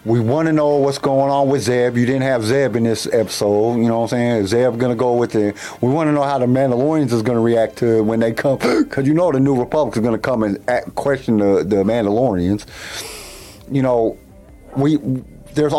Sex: male